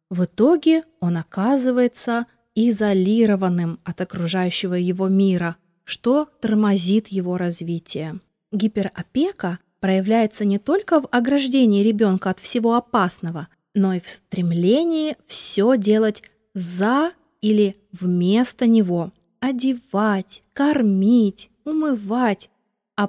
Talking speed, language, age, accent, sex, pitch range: 95 wpm, Russian, 20-39, native, female, 190-240 Hz